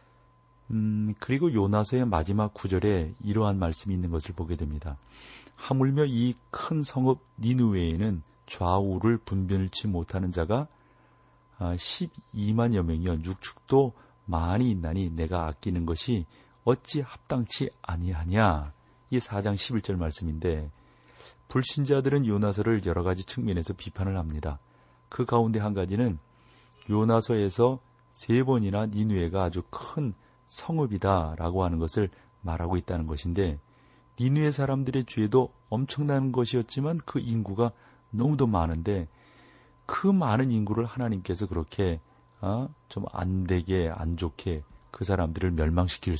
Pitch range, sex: 85-120 Hz, male